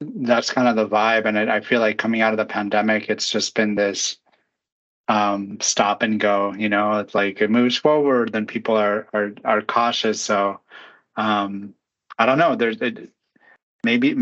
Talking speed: 185 wpm